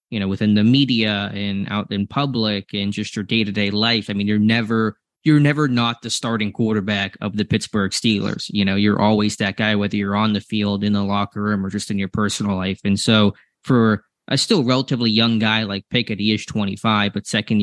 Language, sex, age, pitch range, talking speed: English, male, 20-39, 100-115 Hz, 220 wpm